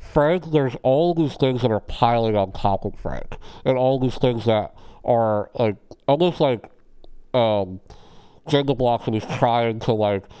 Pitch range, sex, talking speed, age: 105-125 Hz, male, 165 wpm, 50-69